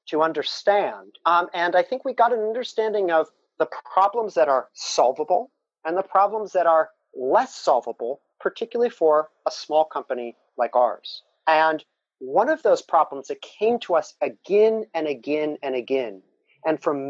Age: 40-59